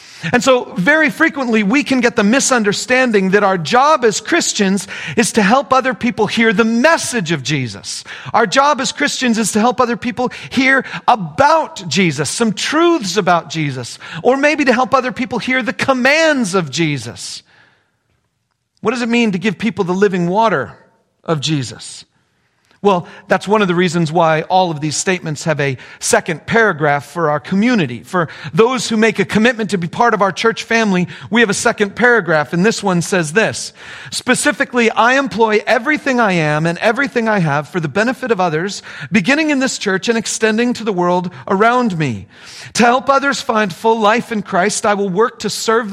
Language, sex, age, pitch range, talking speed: English, male, 40-59, 180-245 Hz, 185 wpm